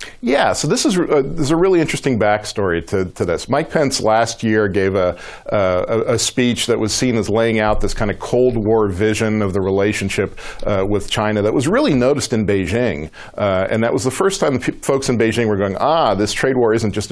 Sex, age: male, 50-69